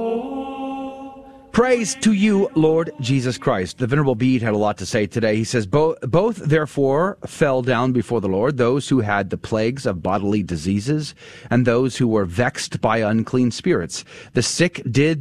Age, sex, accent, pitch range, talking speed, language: 30-49, male, American, 125-195 Hz, 175 wpm, English